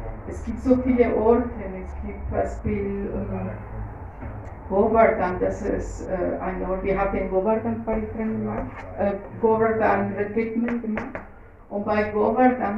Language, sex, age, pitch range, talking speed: German, female, 50-69, 175-235 Hz, 120 wpm